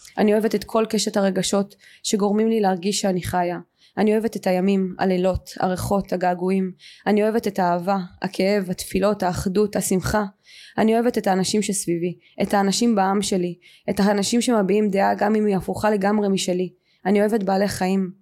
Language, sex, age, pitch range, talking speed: Hebrew, female, 20-39, 185-210 Hz, 160 wpm